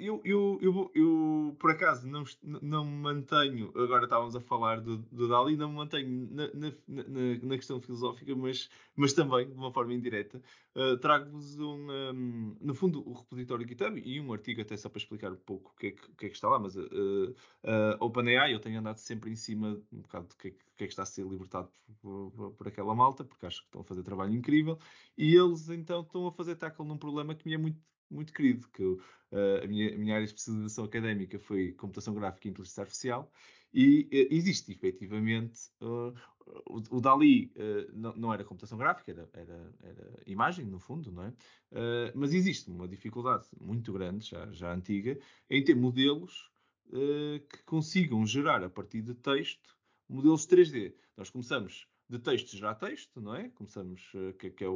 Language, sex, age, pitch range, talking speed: Portuguese, male, 20-39, 105-145 Hz, 185 wpm